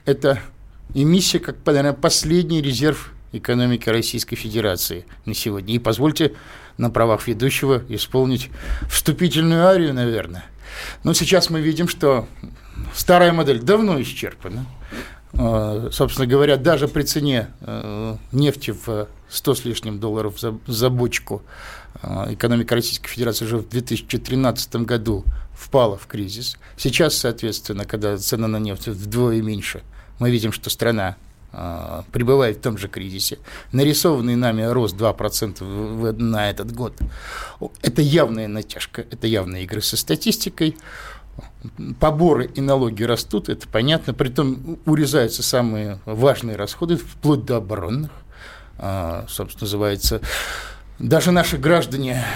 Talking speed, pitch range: 120 wpm, 110-140 Hz